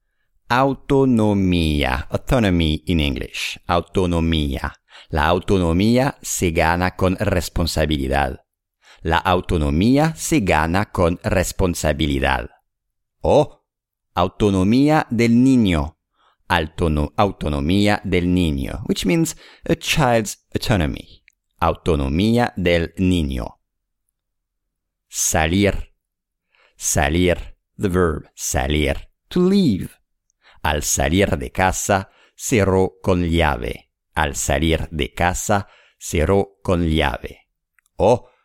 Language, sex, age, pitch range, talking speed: English, male, 50-69, 80-100 Hz, 85 wpm